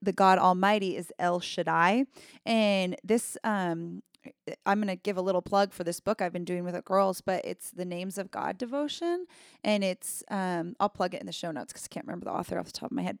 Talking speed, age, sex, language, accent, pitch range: 245 wpm, 20-39, female, English, American, 180-220 Hz